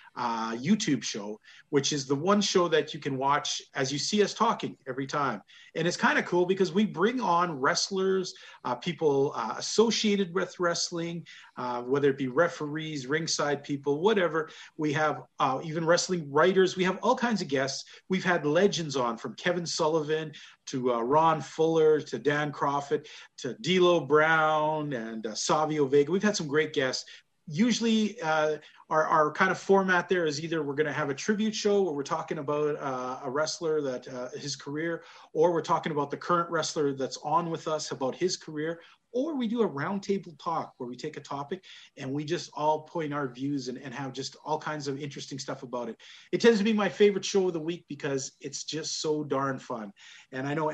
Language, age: English, 40-59